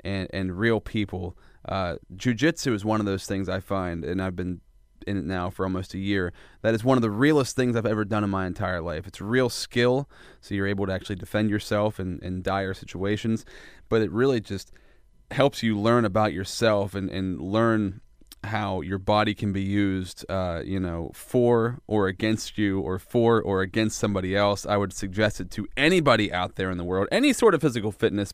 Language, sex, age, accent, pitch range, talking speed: English, male, 30-49, American, 95-120 Hz, 210 wpm